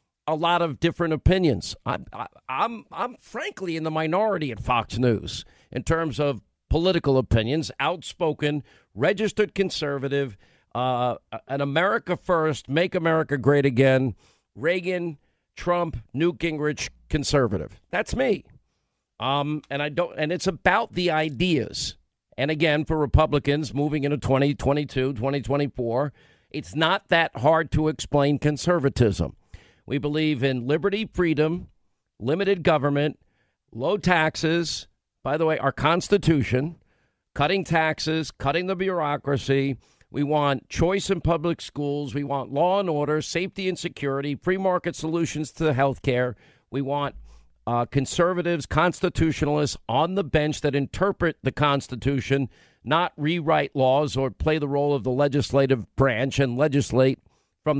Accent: American